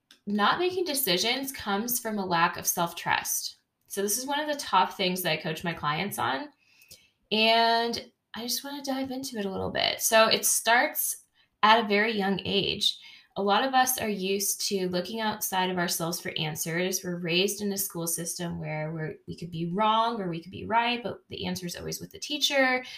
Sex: female